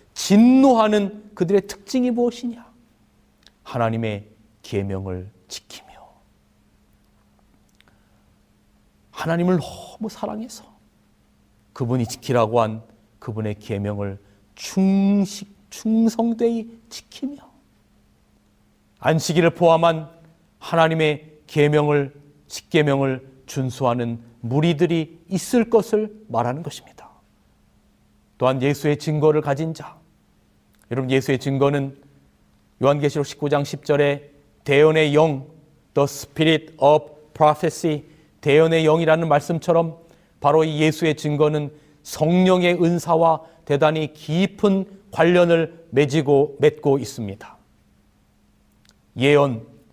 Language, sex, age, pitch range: Korean, male, 40-59, 135-175 Hz